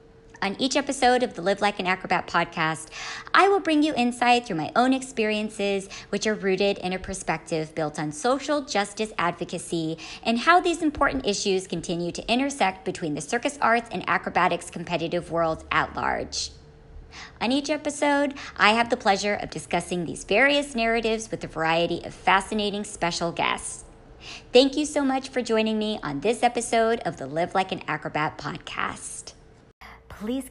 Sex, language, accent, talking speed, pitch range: male, English, American, 165 wpm, 170-240 Hz